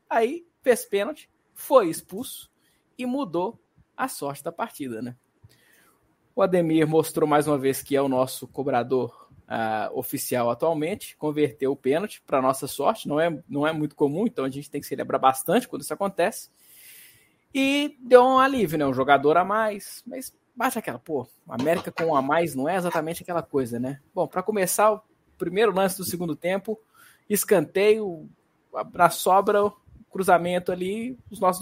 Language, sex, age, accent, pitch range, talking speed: Portuguese, male, 20-39, Brazilian, 140-205 Hz, 170 wpm